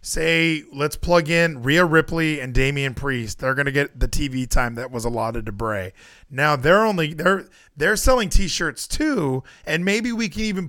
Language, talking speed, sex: English, 190 wpm, male